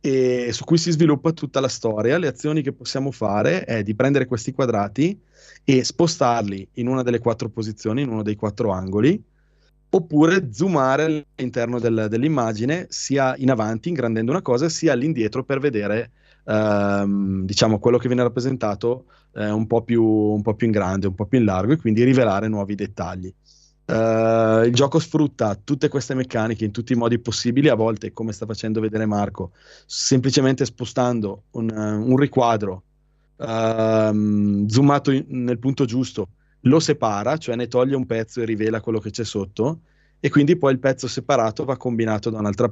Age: 20-39